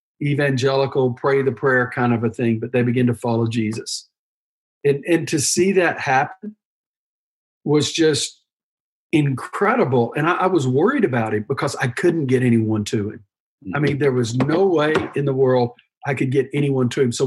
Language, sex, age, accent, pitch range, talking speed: English, male, 50-69, American, 125-160 Hz, 185 wpm